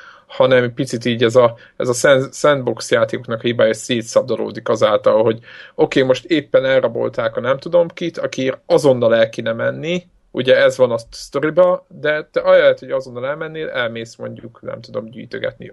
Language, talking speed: Hungarian, 165 wpm